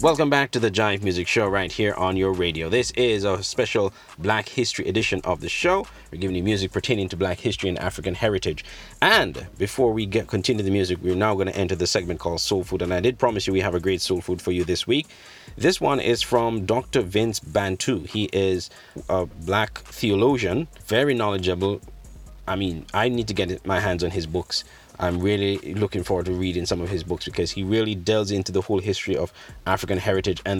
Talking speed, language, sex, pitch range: 220 wpm, English, male, 90-105 Hz